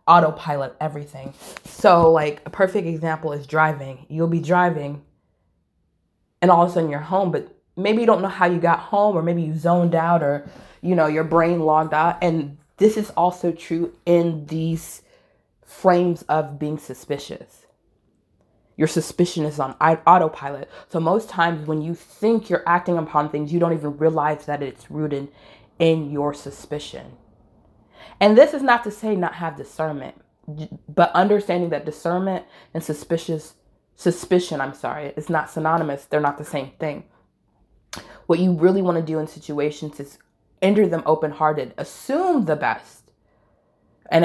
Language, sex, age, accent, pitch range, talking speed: English, female, 20-39, American, 150-180 Hz, 160 wpm